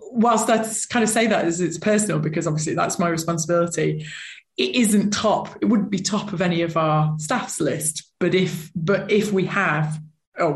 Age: 20-39